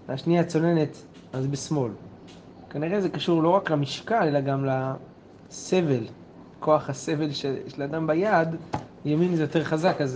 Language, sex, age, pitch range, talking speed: Hebrew, male, 30-49, 135-170 Hz, 140 wpm